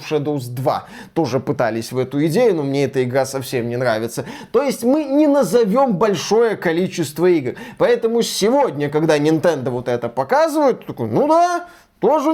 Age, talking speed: 20-39, 160 wpm